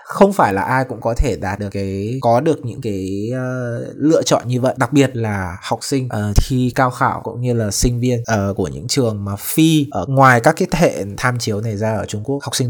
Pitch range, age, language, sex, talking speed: 110-145 Hz, 20-39, Vietnamese, male, 255 wpm